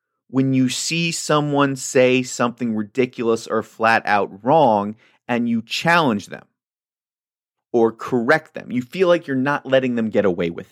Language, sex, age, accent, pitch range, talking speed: English, male, 30-49, American, 100-150 Hz, 150 wpm